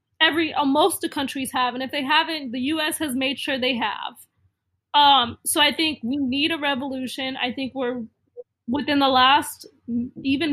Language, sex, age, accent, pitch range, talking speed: English, female, 20-39, American, 250-295 Hz, 180 wpm